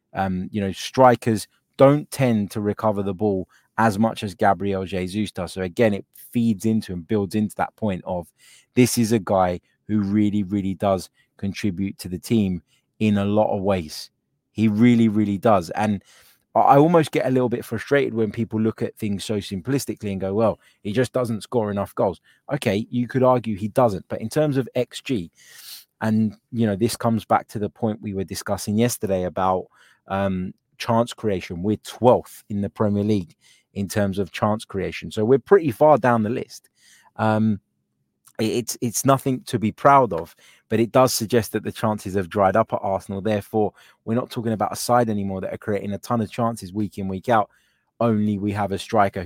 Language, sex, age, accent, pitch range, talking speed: English, male, 20-39, British, 95-115 Hz, 200 wpm